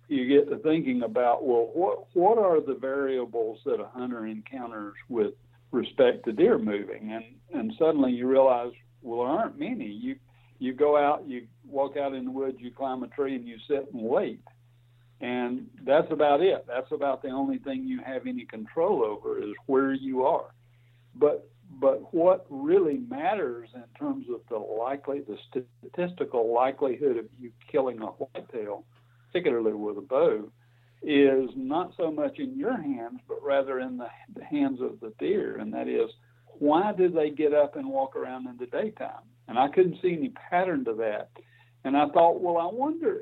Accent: American